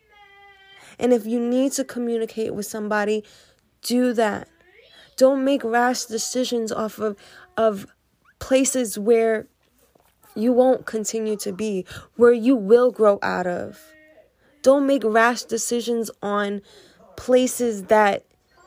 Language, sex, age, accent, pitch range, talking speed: English, female, 10-29, American, 220-265 Hz, 120 wpm